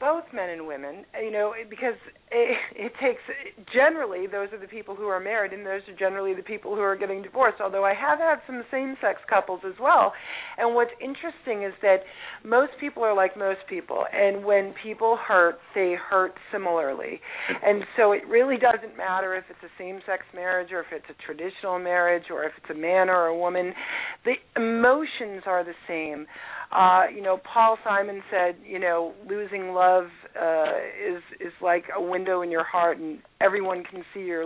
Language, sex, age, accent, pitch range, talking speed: English, female, 40-59, American, 180-230 Hz, 190 wpm